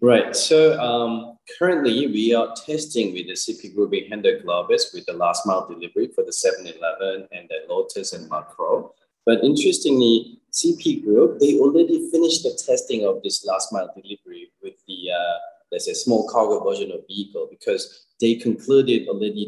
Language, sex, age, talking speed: English, male, 20-39, 170 wpm